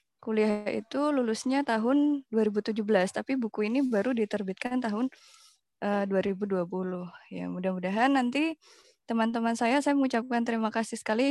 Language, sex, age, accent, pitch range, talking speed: Indonesian, female, 20-39, native, 210-250 Hz, 120 wpm